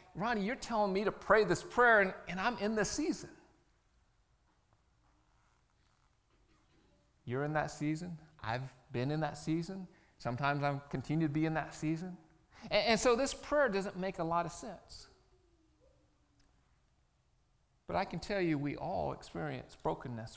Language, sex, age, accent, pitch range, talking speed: English, male, 40-59, American, 135-175 Hz, 150 wpm